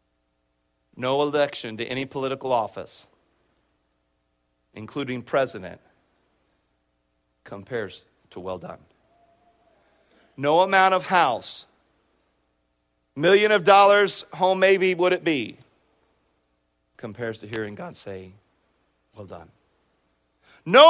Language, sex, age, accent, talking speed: English, male, 40-59, American, 90 wpm